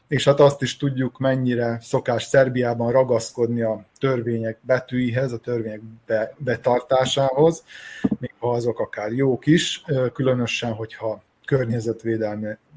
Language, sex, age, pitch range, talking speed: Hungarian, male, 30-49, 110-135 Hz, 120 wpm